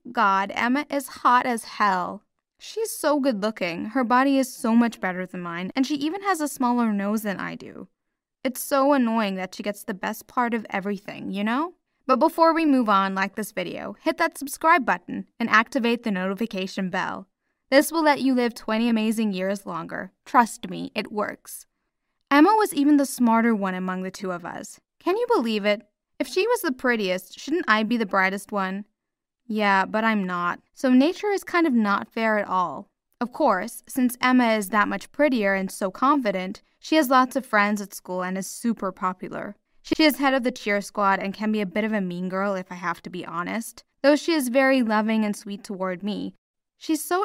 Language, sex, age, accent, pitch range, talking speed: English, female, 10-29, American, 200-275 Hz, 210 wpm